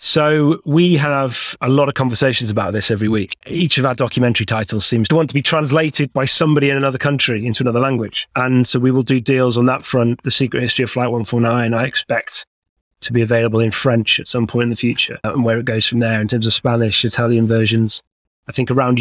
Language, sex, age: English, male, 30-49